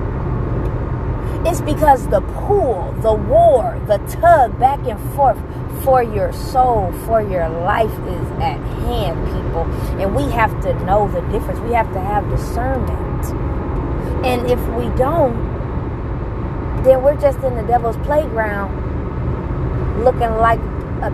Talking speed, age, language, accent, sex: 135 wpm, 20-39, English, American, female